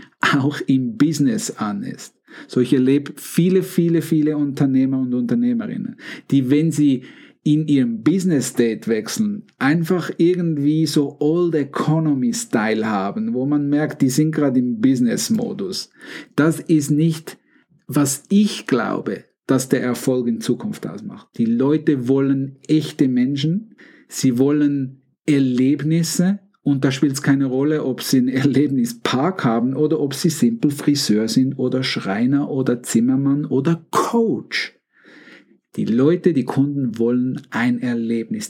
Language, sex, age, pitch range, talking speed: German, male, 50-69, 130-165 Hz, 130 wpm